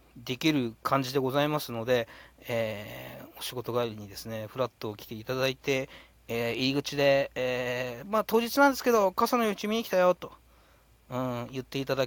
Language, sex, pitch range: Japanese, male, 110-145 Hz